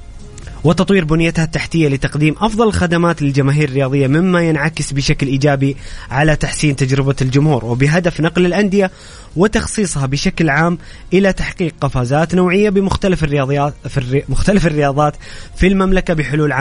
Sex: male